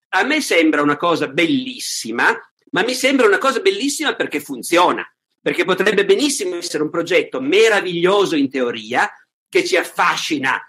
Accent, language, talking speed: native, Italian, 145 wpm